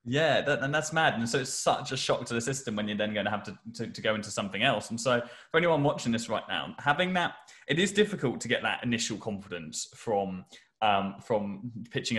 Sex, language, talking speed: male, English, 235 wpm